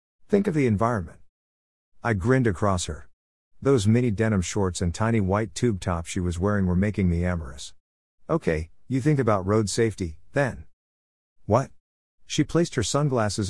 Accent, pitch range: American, 80-120 Hz